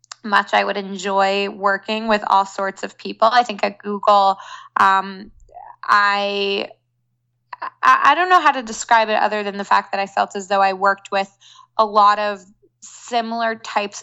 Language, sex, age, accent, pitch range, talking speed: English, female, 20-39, American, 195-225 Hz, 170 wpm